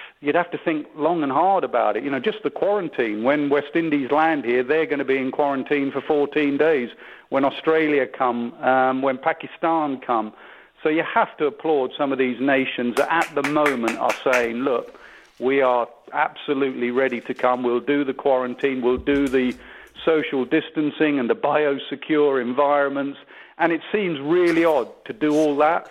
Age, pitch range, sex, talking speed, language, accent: 50-69, 125-150 Hz, male, 185 wpm, English, British